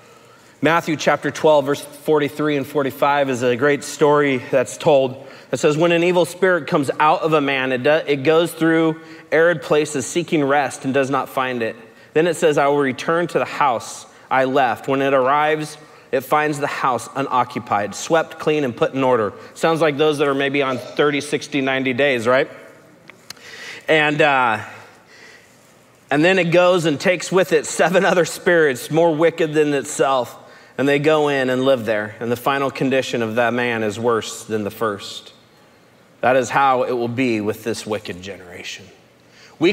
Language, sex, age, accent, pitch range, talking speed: English, male, 30-49, American, 135-175 Hz, 180 wpm